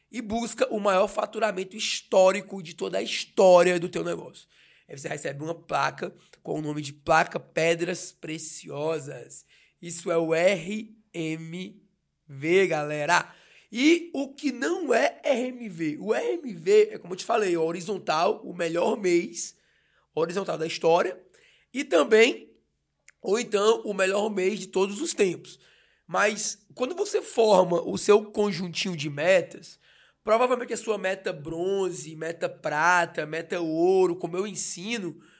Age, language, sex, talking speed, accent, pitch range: 20-39, Portuguese, male, 140 wpm, Brazilian, 170-220 Hz